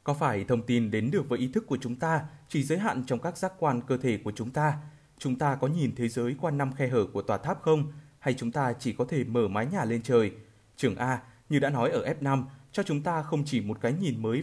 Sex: male